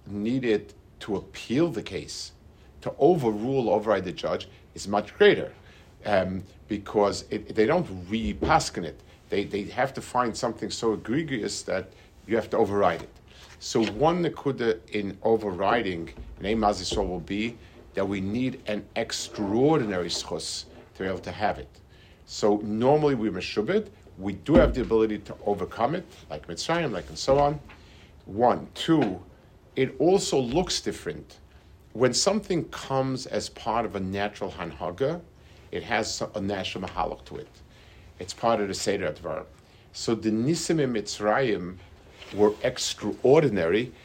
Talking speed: 150 wpm